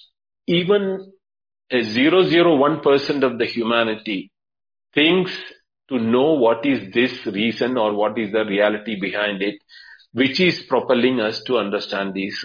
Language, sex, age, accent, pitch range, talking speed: English, male, 50-69, Indian, 110-185 Hz, 130 wpm